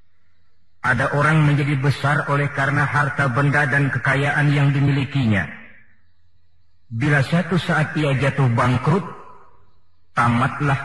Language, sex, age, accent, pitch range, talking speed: Indonesian, male, 40-59, native, 115-155 Hz, 105 wpm